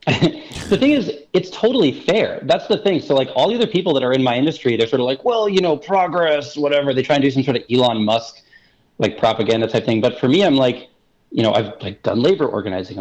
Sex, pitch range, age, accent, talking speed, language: male, 110-140 Hz, 30-49, American, 250 wpm, English